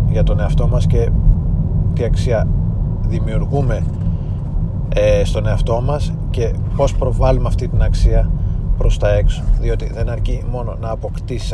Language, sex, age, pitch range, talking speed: Greek, male, 30-49, 90-115 Hz, 140 wpm